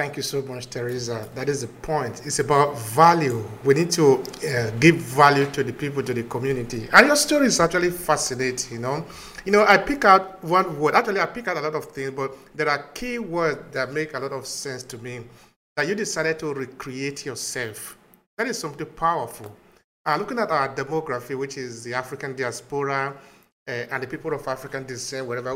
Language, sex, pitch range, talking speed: English, male, 135-185 Hz, 205 wpm